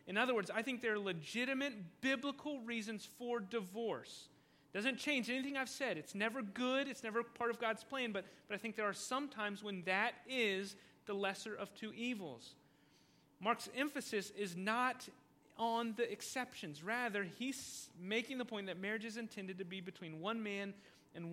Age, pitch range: 30-49, 185-235 Hz